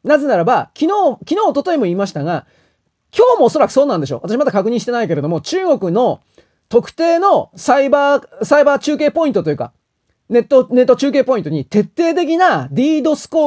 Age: 30-49